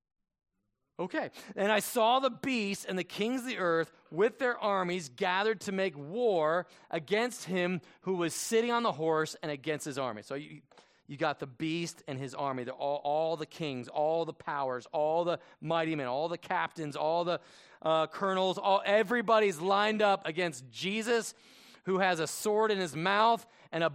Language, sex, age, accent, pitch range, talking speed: English, male, 30-49, American, 155-215 Hz, 185 wpm